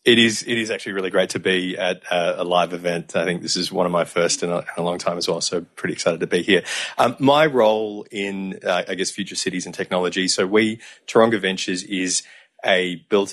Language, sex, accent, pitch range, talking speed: English, male, Australian, 90-110 Hz, 245 wpm